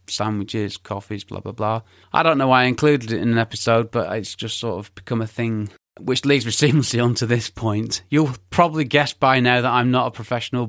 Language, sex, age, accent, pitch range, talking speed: English, male, 30-49, British, 105-140 Hz, 225 wpm